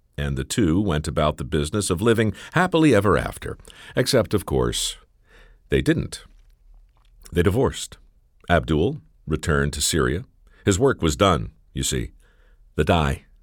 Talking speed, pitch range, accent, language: 140 wpm, 75-110 Hz, American, English